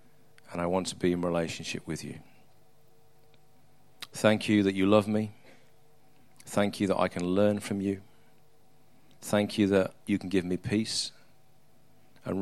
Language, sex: English, male